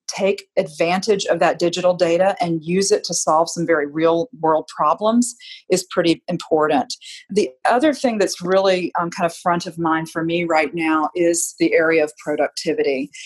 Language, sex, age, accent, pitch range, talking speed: English, female, 40-59, American, 165-195 Hz, 170 wpm